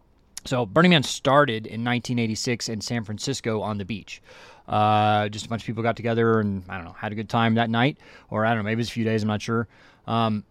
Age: 30-49